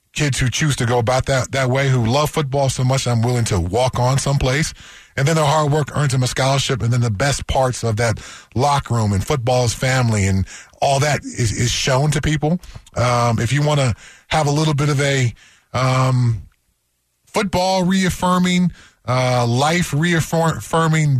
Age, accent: 20-39, American